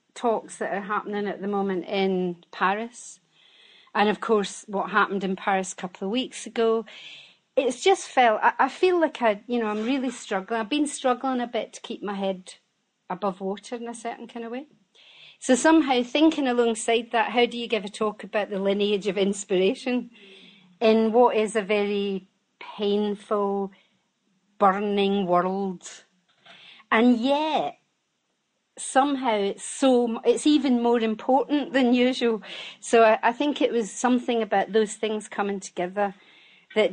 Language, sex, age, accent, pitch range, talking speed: English, female, 40-59, British, 195-250 Hz, 160 wpm